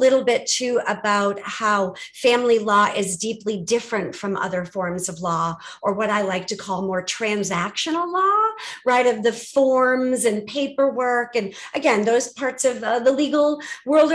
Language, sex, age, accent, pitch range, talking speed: English, female, 50-69, American, 190-265 Hz, 165 wpm